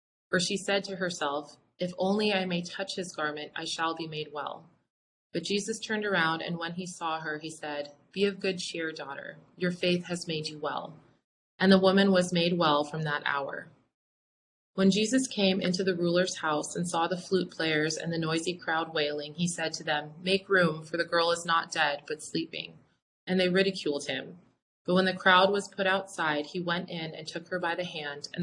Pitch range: 155-190 Hz